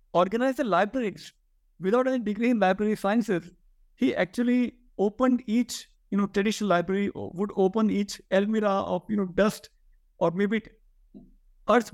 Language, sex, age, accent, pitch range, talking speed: English, male, 60-79, Indian, 175-220 Hz, 140 wpm